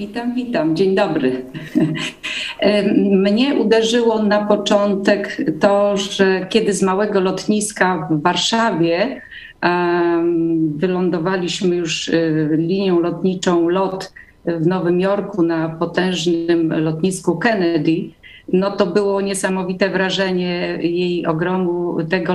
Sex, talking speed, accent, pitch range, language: female, 95 wpm, native, 175-220 Hz, Polish